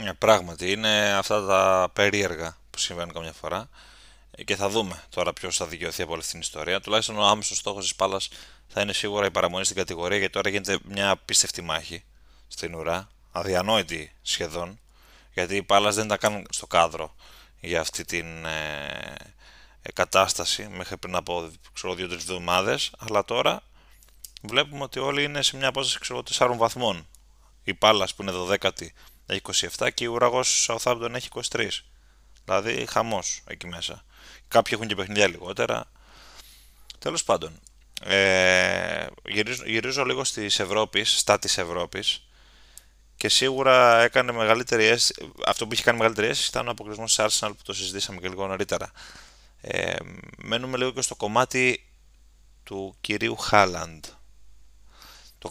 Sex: male